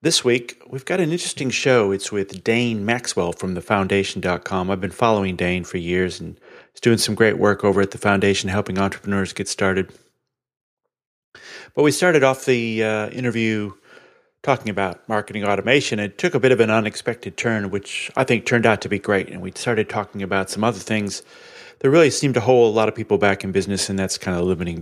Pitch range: 95-120 Hz